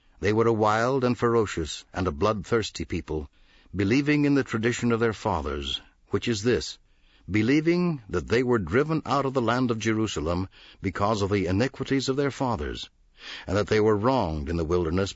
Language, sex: English, male